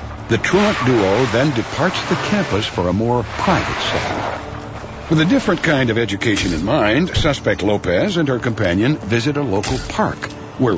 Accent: American